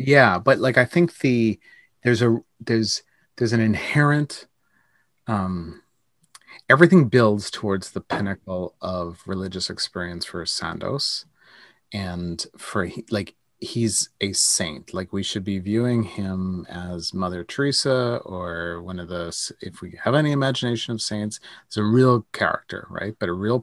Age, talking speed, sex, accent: 30-49, 145 wpm, male, American